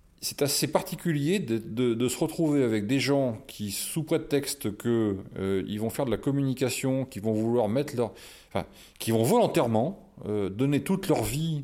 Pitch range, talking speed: 95-135 Hz, 165 wpm